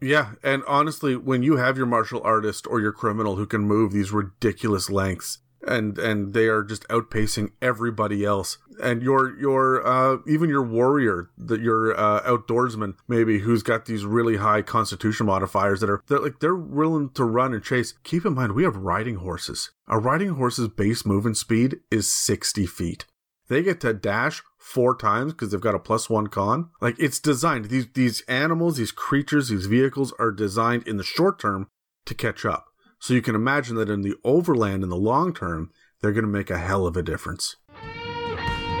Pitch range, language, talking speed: 105-130 Hz, English, 190 wpm